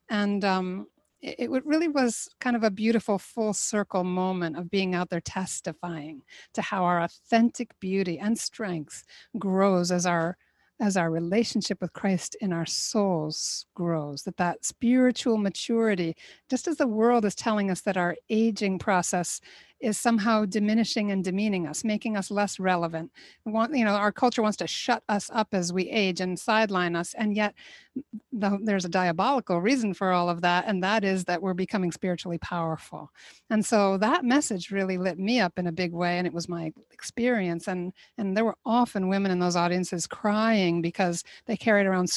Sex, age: female, 60-79